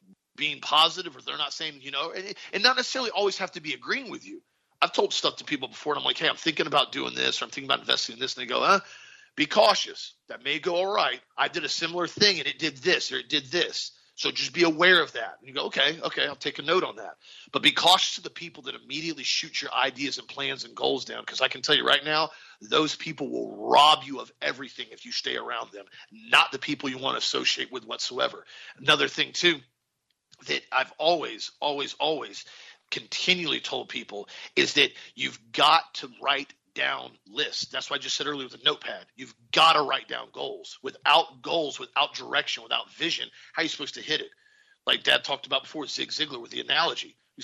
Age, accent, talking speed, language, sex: 40-59, American, 230 wpm, English, male